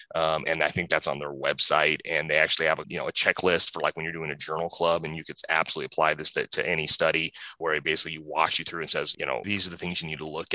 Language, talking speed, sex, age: English, 300 wpm, male, 30-49